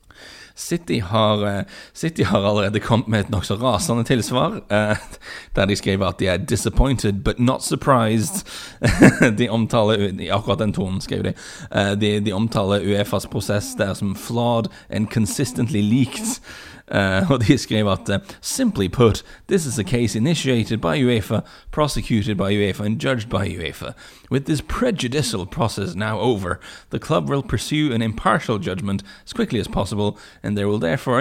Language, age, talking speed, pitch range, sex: English, 30-49, 155 wpm, 100-120 Hz, male